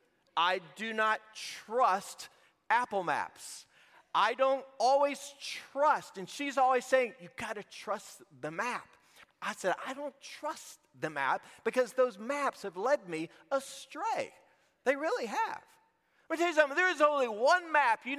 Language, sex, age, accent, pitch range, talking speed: English, male, 40-59, American, 185-280 Hz, 155 wpm